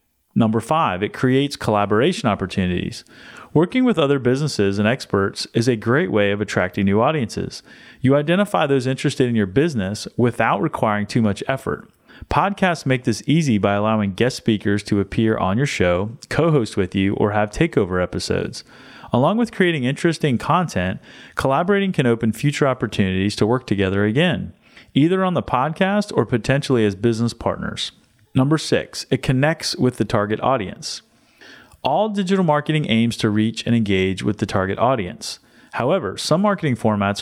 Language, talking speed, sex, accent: English, 160 wpm, male, American